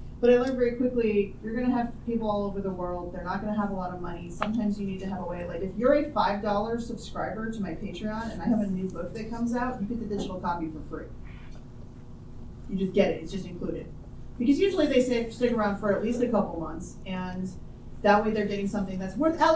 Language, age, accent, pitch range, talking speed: English, 30-49, American, 185-230 Hz, 250 wpm